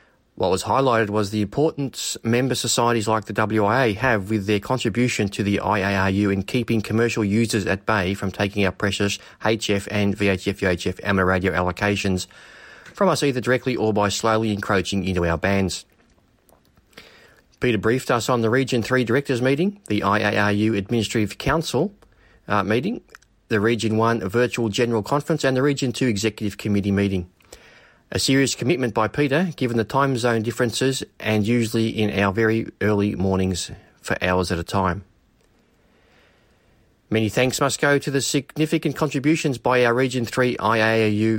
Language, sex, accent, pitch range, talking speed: English, male, Australian, 100-125 Hz, 155 wpm